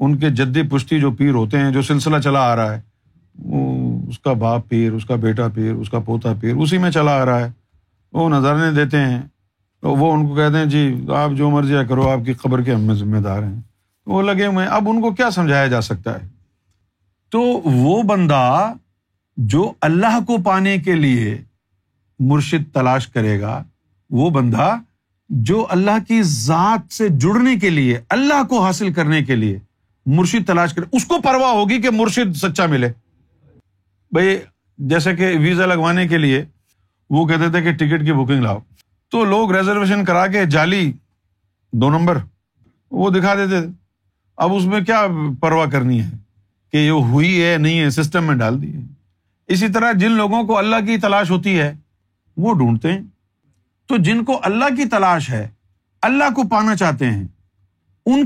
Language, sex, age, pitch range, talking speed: Urdu, male, 50-69, 110-185 Hz, 185 wpm